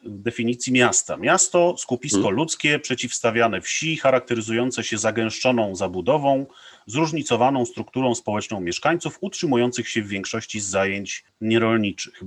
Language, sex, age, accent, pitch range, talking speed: Polish, male, 30-49, native, 110-135 Hz, 110 wpm